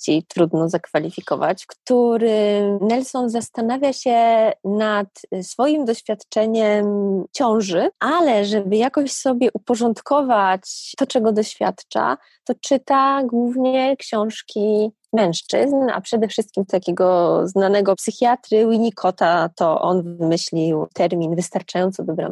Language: Polish